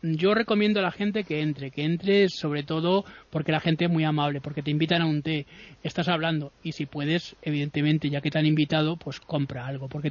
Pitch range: 150-180 Hz